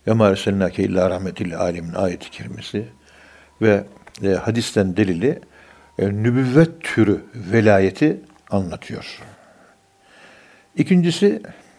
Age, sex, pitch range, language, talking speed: 60-79, male, 100-145 Hz, Turkish, 65 wpm